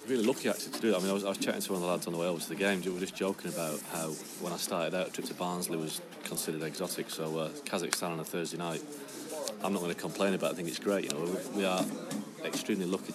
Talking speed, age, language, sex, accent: 305 wpm, 30-49, English, male, British